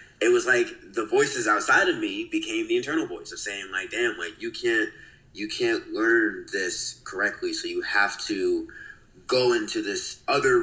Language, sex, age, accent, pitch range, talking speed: English, male, 20-39, American, 345-375 Hz, 180 wpm